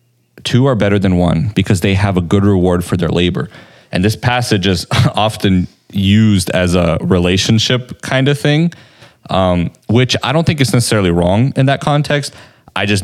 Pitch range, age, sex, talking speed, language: 90-110 Hz, 30-49, male, 180 wpm, English